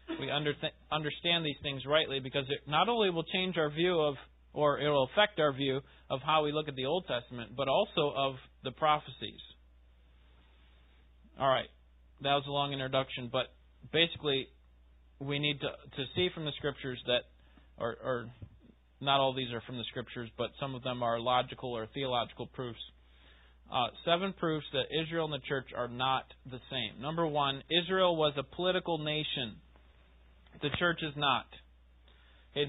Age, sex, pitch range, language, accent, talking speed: 30-49, male, 115-180 Hz, English, American, 170 wpm